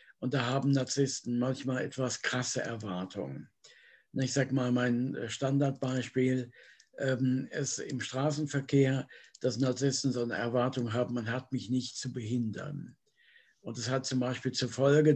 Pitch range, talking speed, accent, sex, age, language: 125-135 Hz, 140 wpm, German, male, 60-79, German